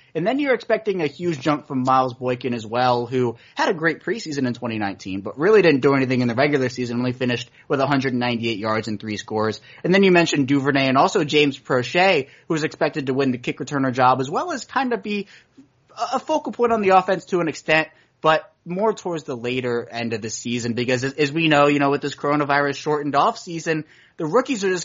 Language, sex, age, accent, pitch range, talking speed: English, male, 20-39, American, 125-155 Hz, 225 wpm